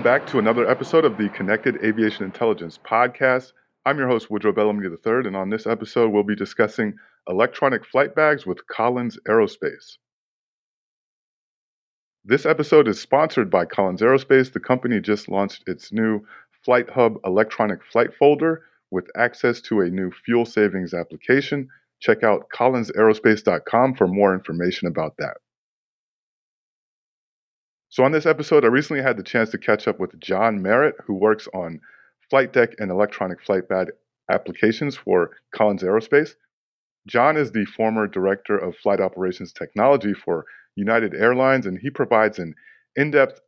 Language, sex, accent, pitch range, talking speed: English, male, American, 100-130 Hz, 150 wpm